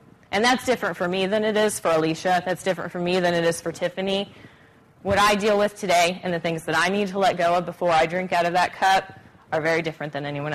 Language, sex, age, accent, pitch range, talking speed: English, female, 20-39, American, 160-195 Hz, 260 wpm